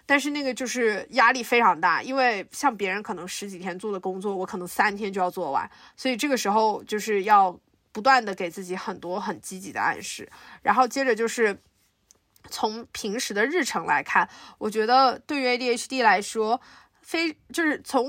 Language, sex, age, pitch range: Chinese, female, 20-39, 200-260 Hz